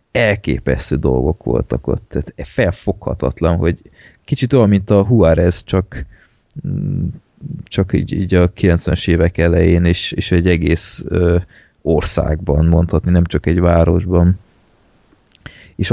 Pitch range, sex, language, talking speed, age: 80-95 Hz, male, Hungarian, 120 wpm, 30-49